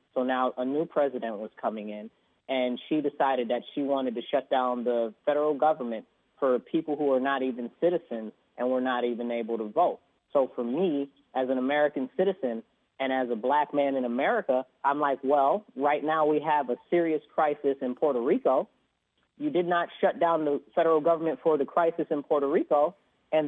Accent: American